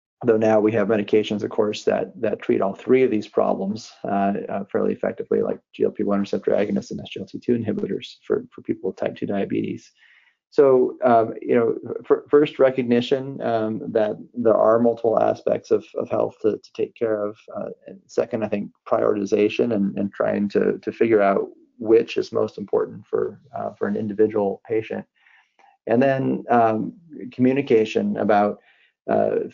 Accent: American